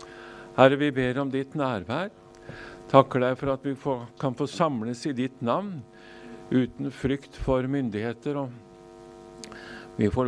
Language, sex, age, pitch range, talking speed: English, male, 50-69, 110-125 Hz, 140 wpm